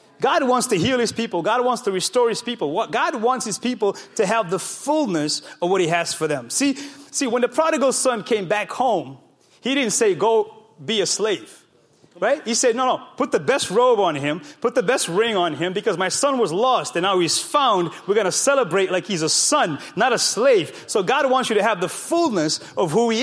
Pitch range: 205-280 Hz